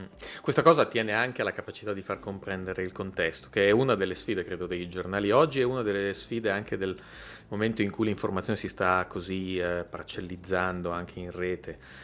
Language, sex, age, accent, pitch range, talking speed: Italian, male, 30-49, native, 90-105 Hz, 190 wpm